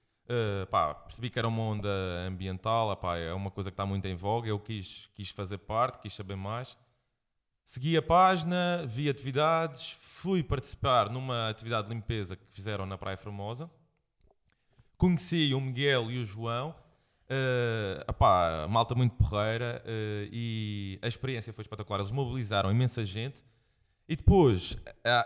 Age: 20-39